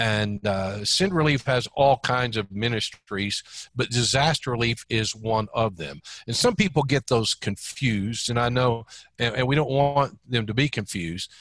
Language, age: English, 50-69